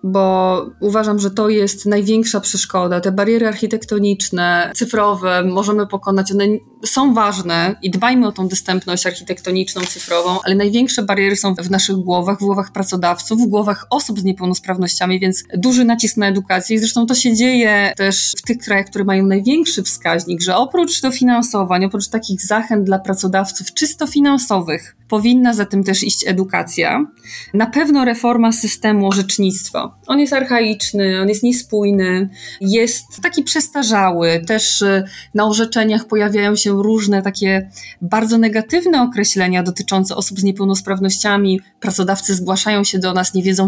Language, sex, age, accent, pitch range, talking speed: Polish, female, 20-39, native, 185-220 Hz, 145 wpm